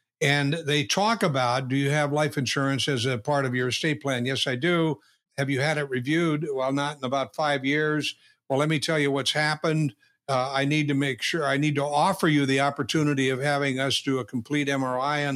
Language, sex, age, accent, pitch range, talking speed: English, male, 60-79, American, 135-160 Hz, 225 wpm